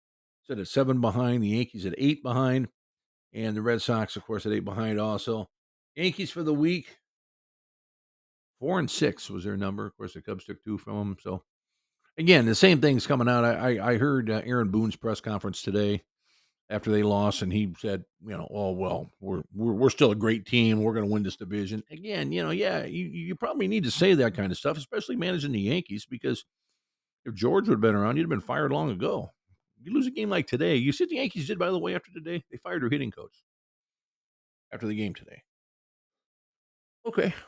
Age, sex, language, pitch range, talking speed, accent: 50-69, male, English, 100-140 Hz, 215 wpm, American